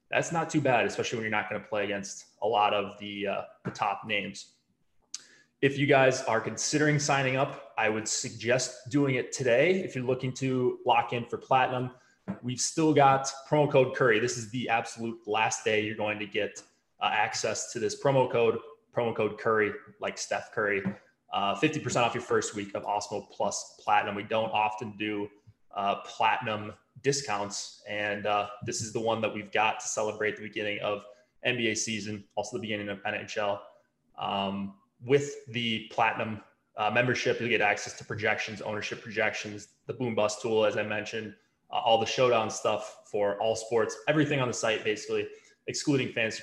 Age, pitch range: 20-39, 105-140 Hz